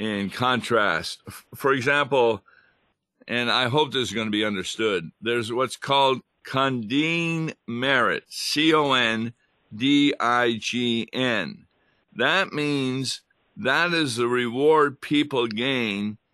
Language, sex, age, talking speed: English, male, 50-69, 100 wpm